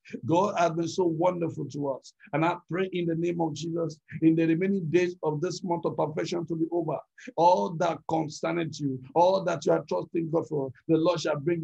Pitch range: 155-180 Hz